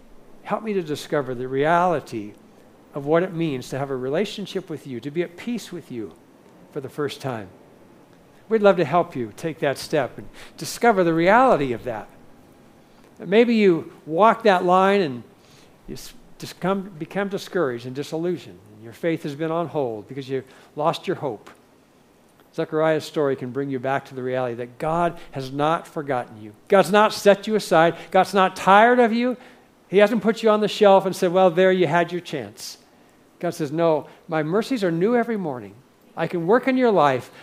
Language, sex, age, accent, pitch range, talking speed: English, male, 60-79, American, 130-190 Hz, 190 wpm